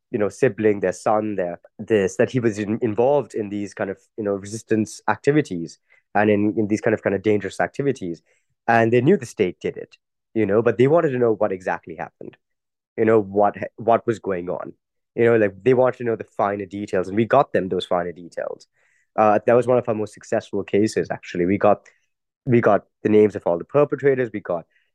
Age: 20-39